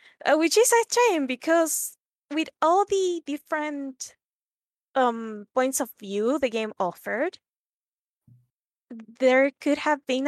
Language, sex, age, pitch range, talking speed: English, female, 20-39, 210-280 Hz, 125 wpm